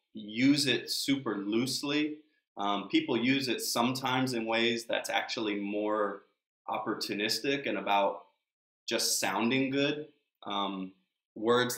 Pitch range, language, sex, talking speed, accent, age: 100-120 Hz, English, male, 110 wpm, American, 20-39